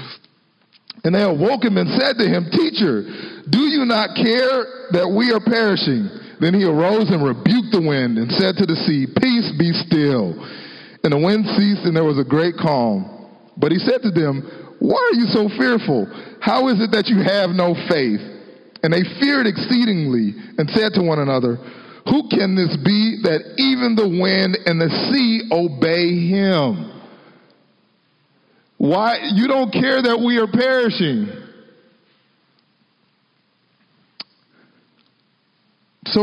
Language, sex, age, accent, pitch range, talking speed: English, male, 40-59, American, 165-225 Hz, 150 wpm